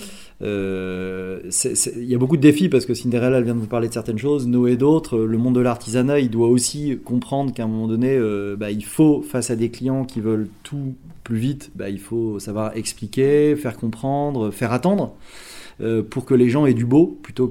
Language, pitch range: French, 110-145 Hz